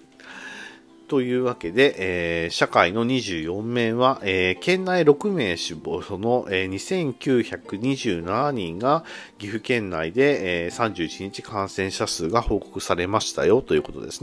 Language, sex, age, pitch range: Japanese, male, 50-69, 85-130 Hz